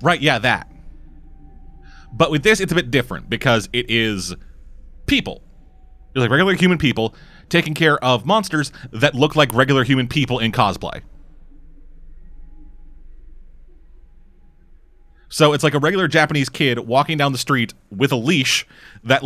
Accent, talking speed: American, 145 wpm